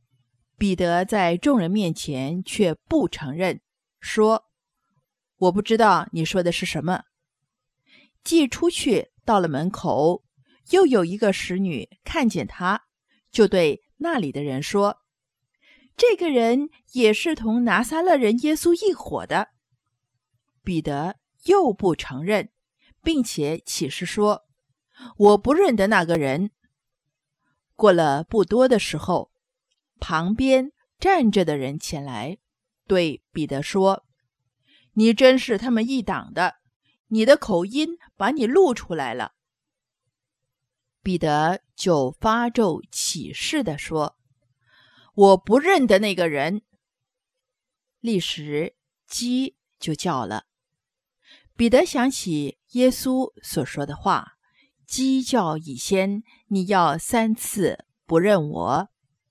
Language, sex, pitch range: English, female, 150-245 Hz